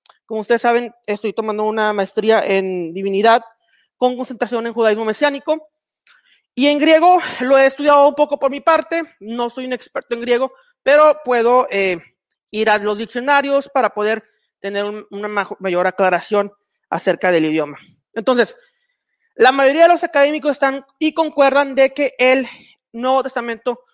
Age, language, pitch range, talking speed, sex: 30-49, Spanish, 220-280 Hz, 155 wpm, male